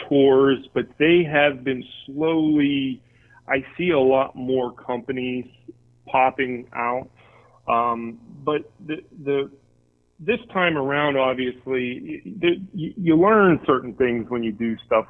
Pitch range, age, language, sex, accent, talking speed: 105-130 Hz, 30-49, English, male, American, 120 wpm